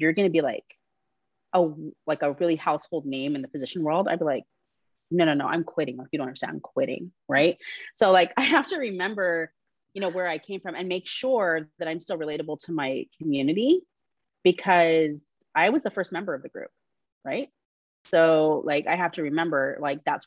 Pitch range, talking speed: 155-195 Hz, 205 wpm